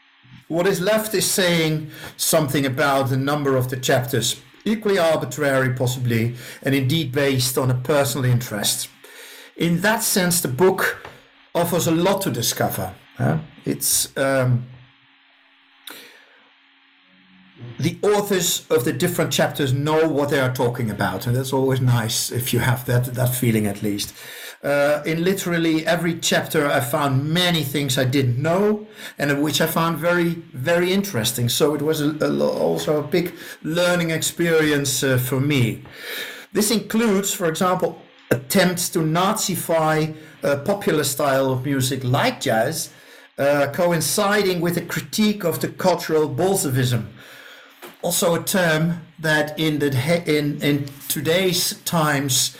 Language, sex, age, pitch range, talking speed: English, male, 60-79, 130-175 Hz, 140 wpm